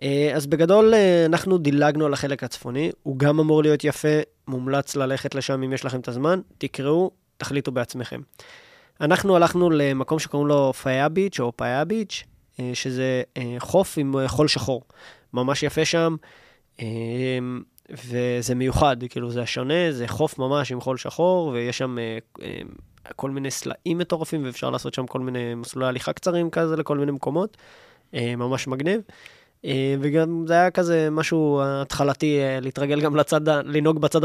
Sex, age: male, 20-39